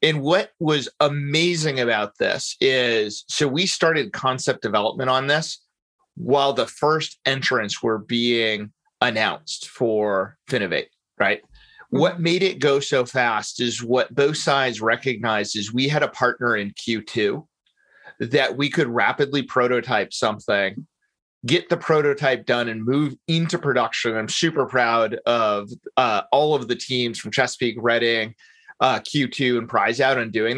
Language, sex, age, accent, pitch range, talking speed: English, male, 30-49, American, 120-150 Hz, 145 wpm